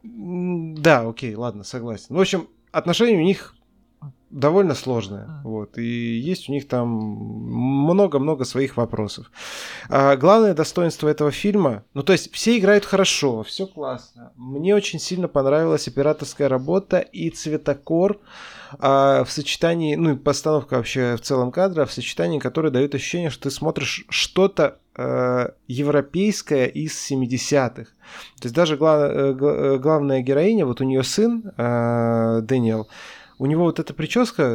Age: 20-39